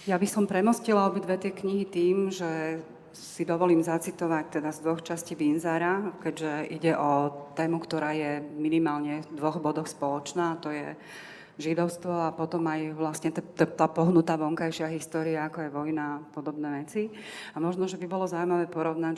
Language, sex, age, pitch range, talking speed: Slovak, female, 30-49, 150-170 Hz, 170 wpm